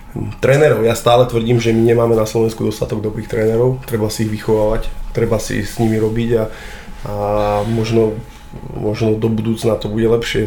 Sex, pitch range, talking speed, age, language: male, 110-120 Hz, 170 wpm, 20-39, Czech